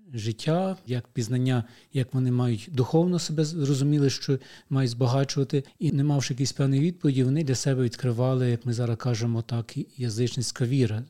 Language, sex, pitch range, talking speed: Ukrainian, male, 120-145 Hz, 155 wpm